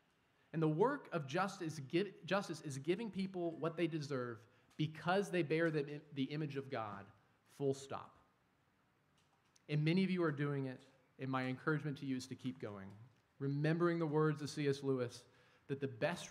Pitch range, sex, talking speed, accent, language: 130-170 Hz, male, 175 wpm, American, English